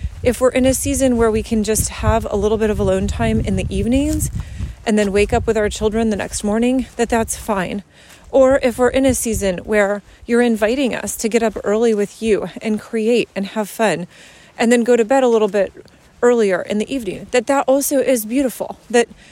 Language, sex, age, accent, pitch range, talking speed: English, female, 30-49, American, 205-245 Hz, 220 wpm